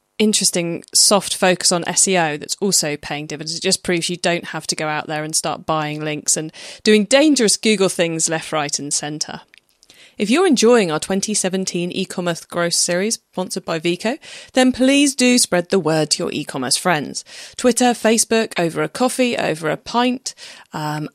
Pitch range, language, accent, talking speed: 165-215 Hz, English, British, 175 wpm